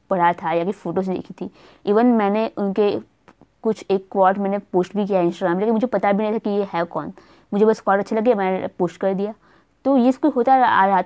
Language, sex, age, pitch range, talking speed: Hindi, female, 20-39, 175-210 Hz, 240 wpm